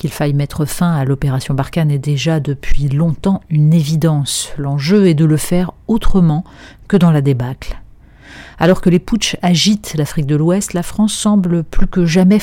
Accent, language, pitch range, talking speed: French, French, 145-185 Hz, 180 wpm